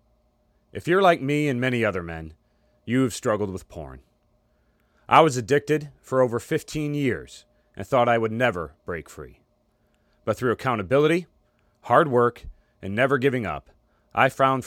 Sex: male